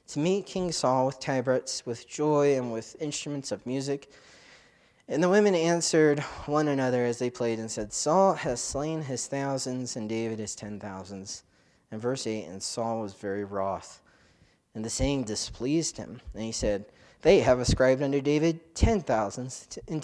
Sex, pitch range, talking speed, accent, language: male, 120-155 Hz, 175 wpm, American, English